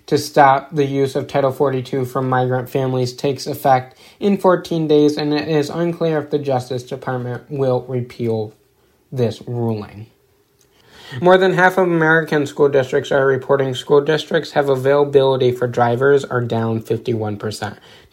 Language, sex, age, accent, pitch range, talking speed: English, male, 20-39, American, 125-155 Hz, 150 wpm